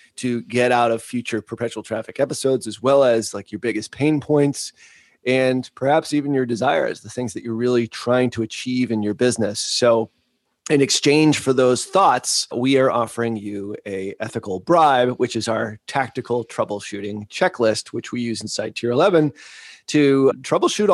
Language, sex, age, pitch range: English, male, 30-49, 115-140 Hz